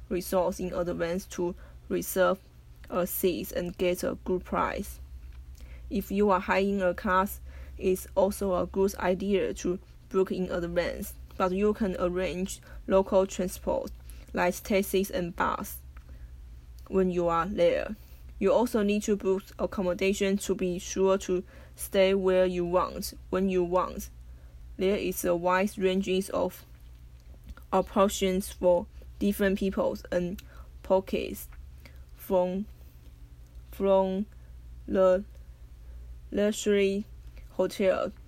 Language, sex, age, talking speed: English, female, 20-39, 120 wpm